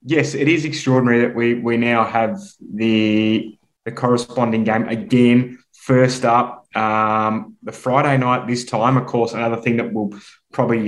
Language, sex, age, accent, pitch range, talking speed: English, male, 20-39, Australian, 110-135 Hz, 160 wpm